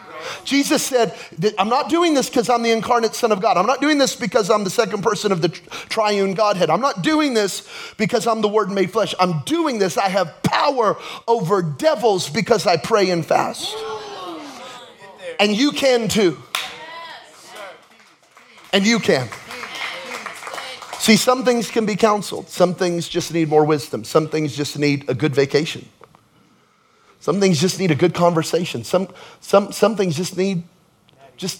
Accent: American